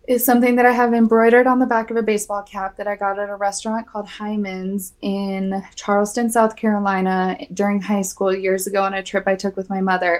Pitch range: 190-220 Hz